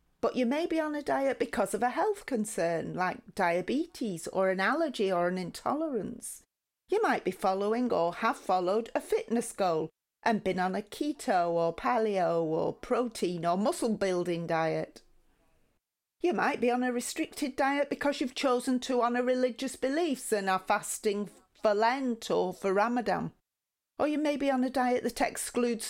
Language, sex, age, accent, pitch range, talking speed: English, female, 40-59, British, 190-255 Hz, 170 wpm